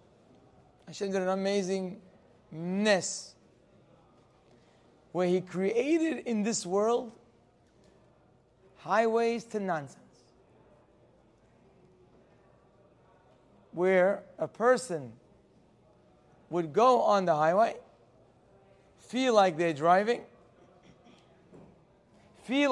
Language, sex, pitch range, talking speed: English, male, 170-225 Hz, 70 wpm